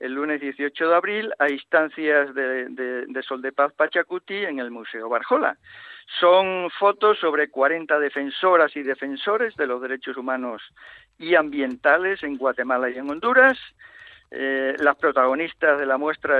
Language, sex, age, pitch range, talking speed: Spanish, male, 50-69, 135-175 Hz, 150 wpm